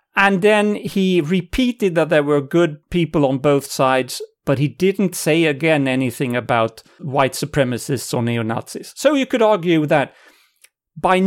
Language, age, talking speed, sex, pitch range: English, 40-59, 155 wpm, male, 135-180 Hz